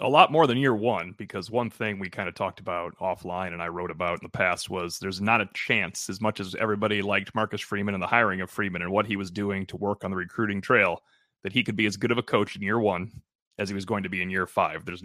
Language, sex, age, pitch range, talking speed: English, male, 30-49, 100-120 Hz, 285 wpm